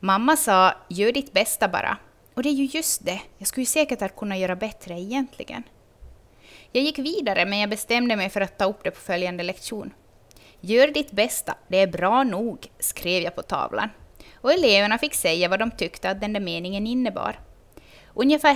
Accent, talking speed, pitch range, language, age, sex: native, 190 wpm, 190-270 Hz, Swedish, 20-39, female